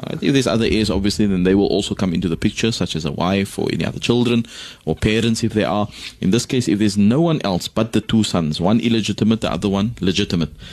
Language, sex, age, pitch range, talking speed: English, male, 30-49, 90-110 Hz, 245 wpm